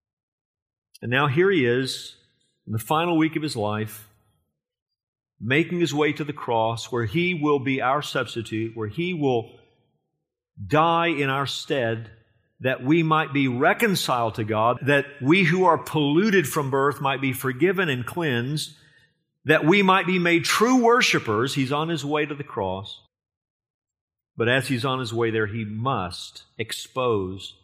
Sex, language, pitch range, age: male, English, 110-140 Hz, 50-69